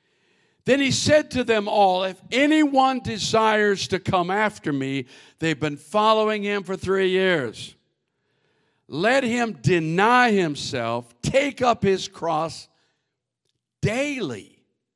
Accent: American